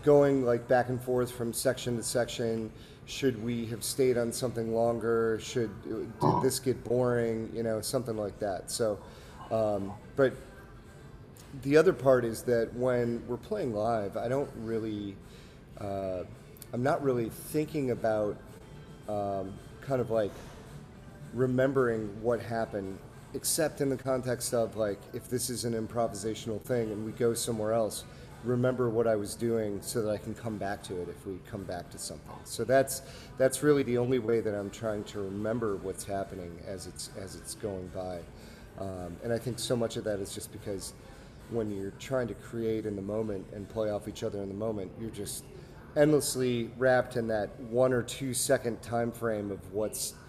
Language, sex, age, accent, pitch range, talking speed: English, male, 30-49, American, 105-125 Hz, 180 wpm